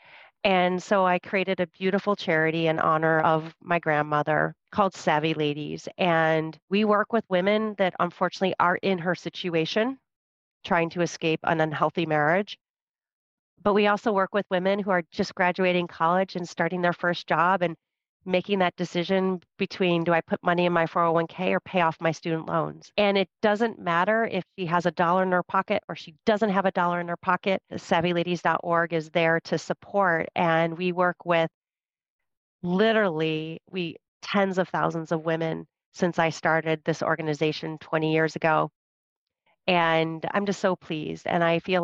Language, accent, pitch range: English, American, 165-190 Hz